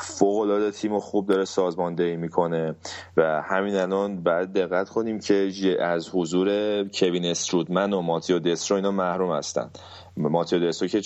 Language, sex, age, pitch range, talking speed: Persian, male, 30-49, 85-95 Hz, 150 wpm